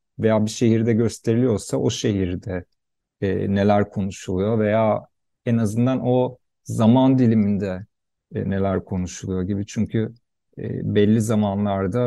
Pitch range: 100-125 Hz